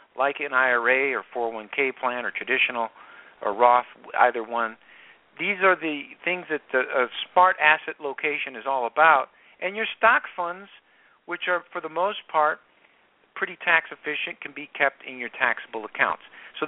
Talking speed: 160 wpm